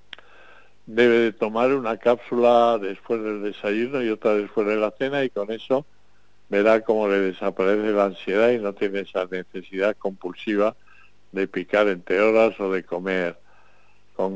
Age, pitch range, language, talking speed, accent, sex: 50-69, 95-115 Hz, Spanish, 155 wpm, Spanish, male